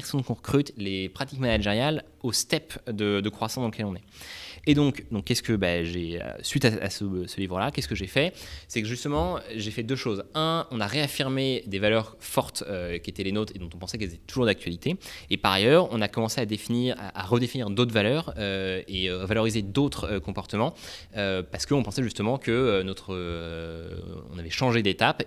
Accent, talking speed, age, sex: French, 210 wpm, 20-39, male